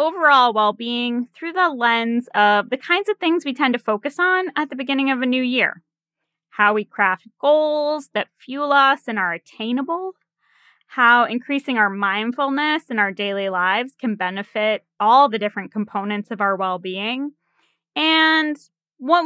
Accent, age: American, 10-29